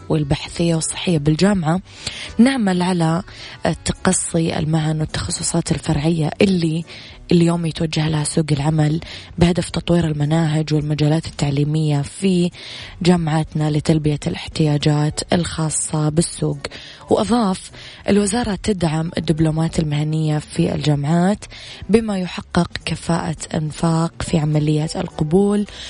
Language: Arabic